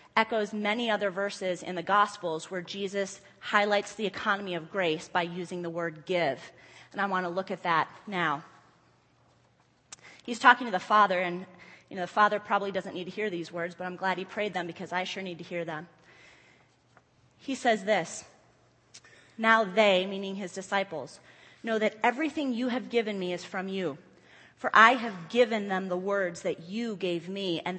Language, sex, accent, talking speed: English, female, American, 190 wpm